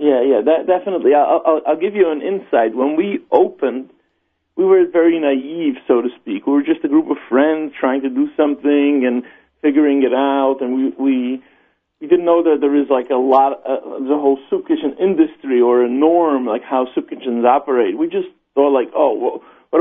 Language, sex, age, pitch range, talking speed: English, male, 40-59, 135-185 Hz, 210 wpm